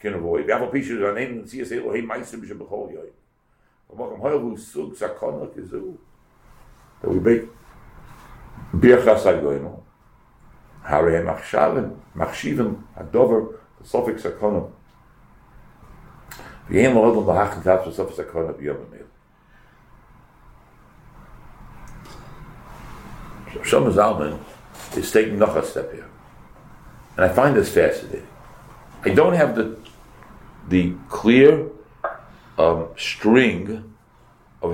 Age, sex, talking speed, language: 60-79, male, 30 wpm, English